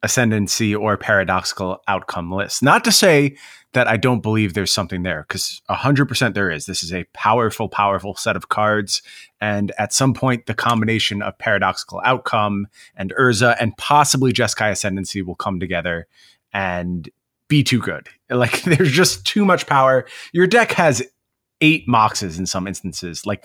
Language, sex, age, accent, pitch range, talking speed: English, male, 30-49, American, 100-125 Hz, 165 wpm